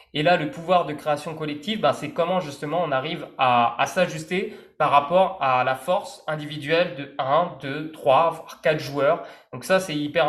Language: French